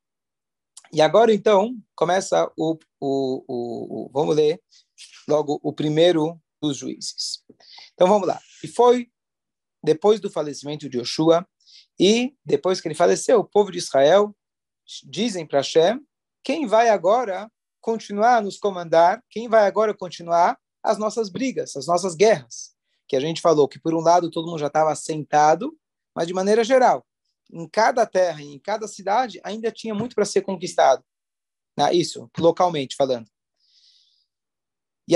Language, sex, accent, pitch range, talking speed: Portuguese, male, Brazilian, 160-220 Hz, 150 wpm